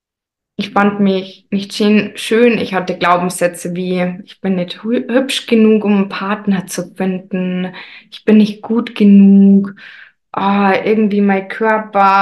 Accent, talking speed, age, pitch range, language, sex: German, 140 wpm, 20-39, 190-215 Hz, German, female